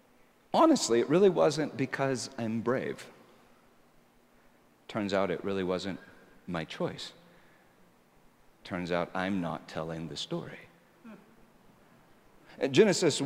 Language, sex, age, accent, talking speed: English, male, 50-69, American, 100 wpm